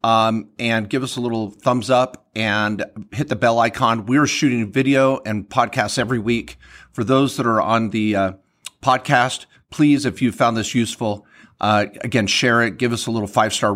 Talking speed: 190 wpm